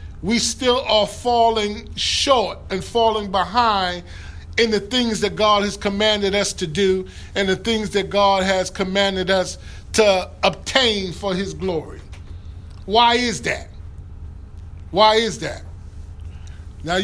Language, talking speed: English, 135 wpm